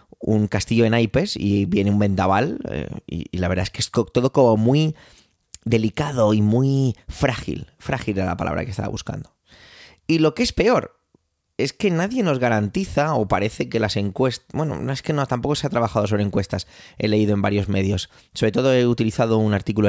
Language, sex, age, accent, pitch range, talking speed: Spanish, male, 20-39, Spanish, 100-130 Hz, 200 wpm